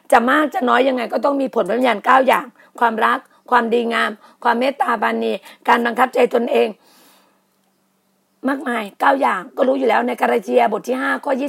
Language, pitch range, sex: Thai, 230-280 Hz, female